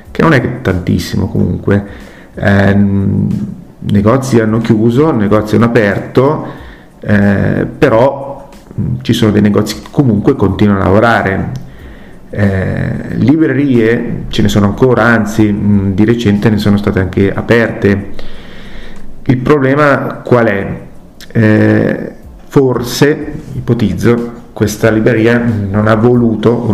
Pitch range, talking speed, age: 100-115 Hz, 115 wpm, 40-59